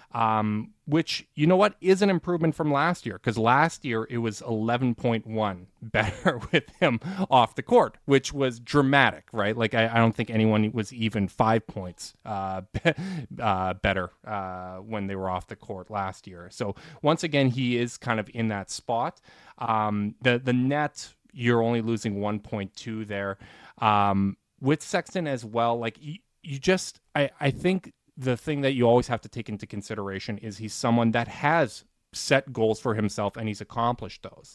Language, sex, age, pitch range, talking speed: English, male, 20-39, 105-135 Hz, 180 wpm